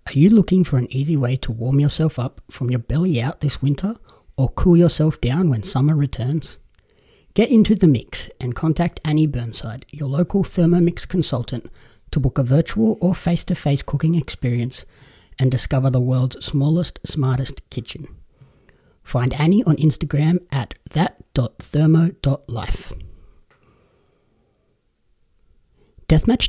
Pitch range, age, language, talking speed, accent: 125-165 Hz, 30-49, English, 130 wpm, Australian